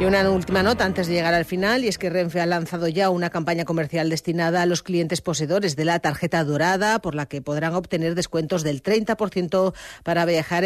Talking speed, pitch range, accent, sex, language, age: 215 wpm, 155-180 Hz, Spanish, female, Spanish, 40-59